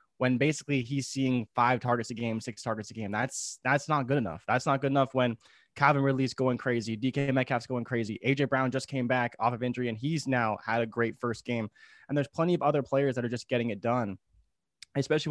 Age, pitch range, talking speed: 20-39, 120-145 Hz, 230 wpm